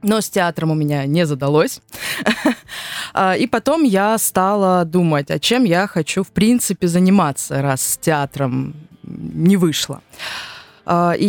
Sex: female